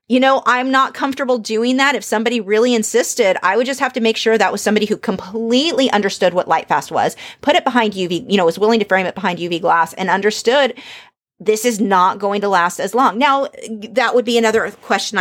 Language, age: English, 30-49